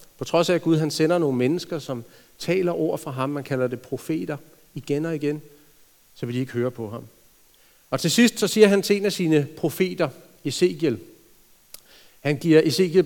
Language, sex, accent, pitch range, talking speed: Danish, male, native, 135-170 Hz, 195 wpm